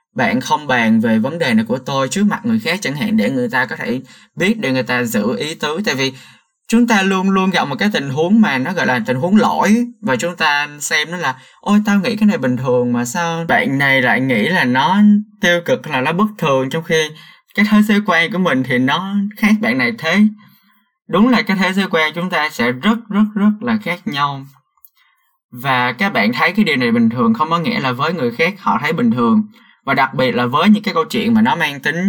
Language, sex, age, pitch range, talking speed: Vietnamese, male, 20-39, 150-225 Hz, 250 wpm